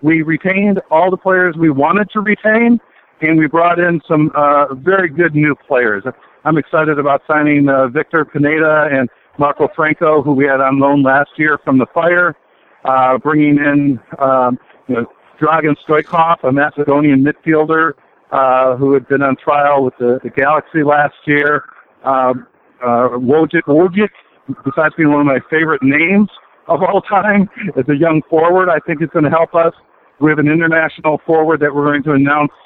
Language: English